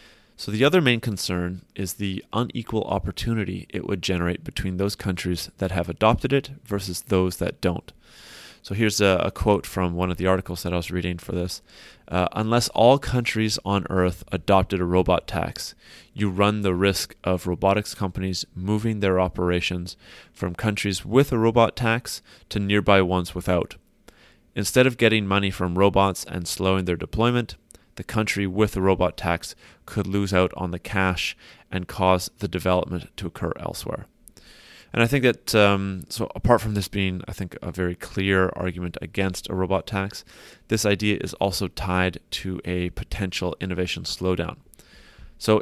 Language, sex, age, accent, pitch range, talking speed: English, male, 30-49, American, 90-105 Hz, 170 wpm